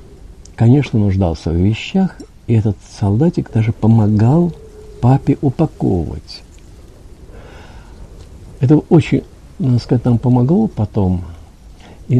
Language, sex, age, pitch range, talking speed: Russian, male, 50-69, 90-125 Hz, 95 wpm